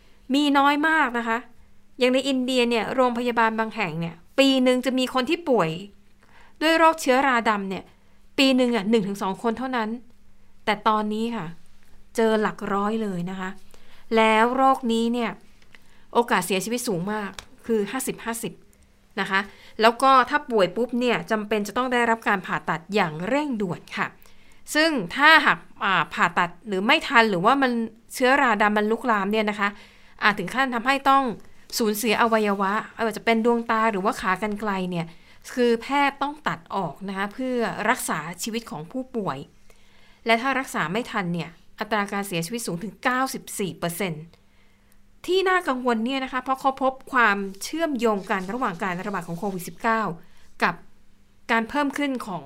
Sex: female